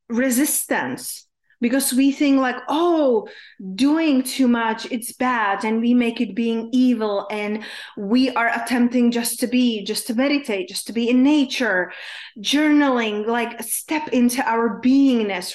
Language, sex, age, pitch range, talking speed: English, female, 30-49, 230-275 Hz, 145 wpm